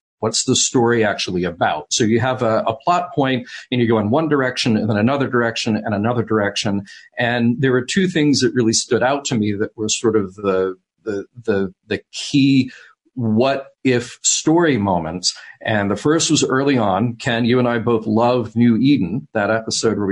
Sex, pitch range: male, 105-130 Hz